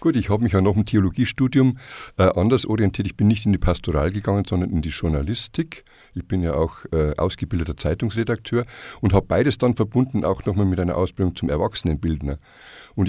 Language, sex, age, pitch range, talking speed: German, male, 50-69, 85-110 Hz, 195 wpm